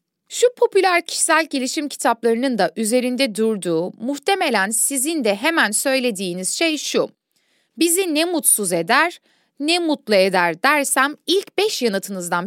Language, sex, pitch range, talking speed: Turkish, female, 200-330 Hz, 125 wpm